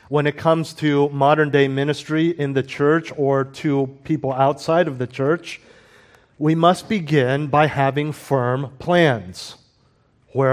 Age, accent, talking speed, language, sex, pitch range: 50-69, American, 145 wpm, English, male, 130-160 Hz